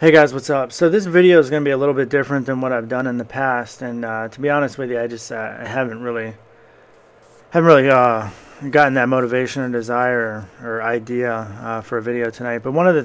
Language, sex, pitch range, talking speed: English, male, 120-145 Hz, 245 wpm